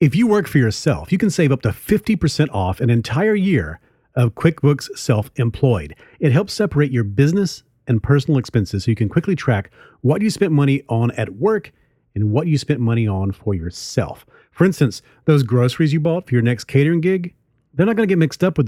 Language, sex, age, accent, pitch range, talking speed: English, male, 40-59, American, 115-155 Hz, 210 wpm